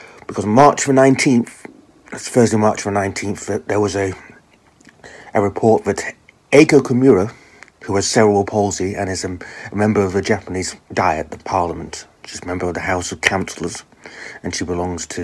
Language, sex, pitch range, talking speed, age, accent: English, male, 90-115 Hz, 170 wpm, 30-49, British